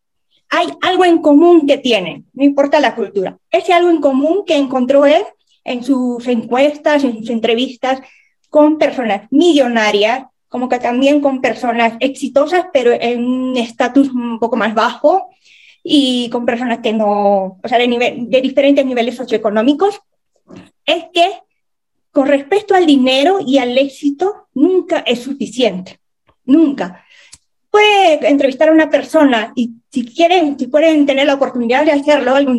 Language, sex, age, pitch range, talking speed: Spanish, female, 20-39, 245-315 Hz, 150 wpm